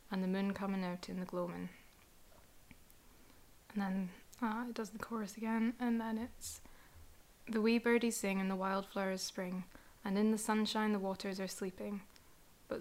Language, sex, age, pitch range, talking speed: English, female, 20-39, 190-215 Hz, 170 wpm